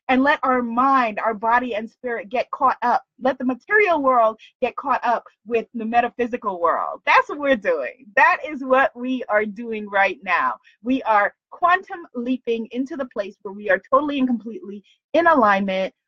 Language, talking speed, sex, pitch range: English, 185 wpm, female, 200-255 Hz